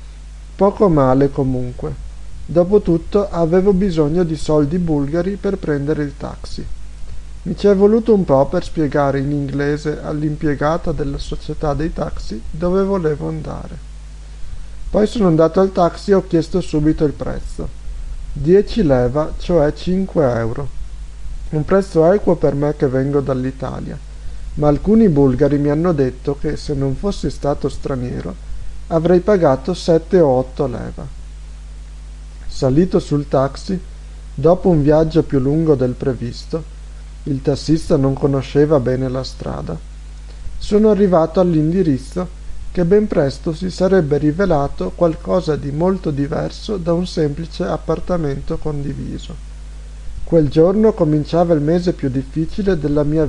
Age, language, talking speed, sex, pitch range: 50-69, Italian, 130 wpm, male, 135-175 Hz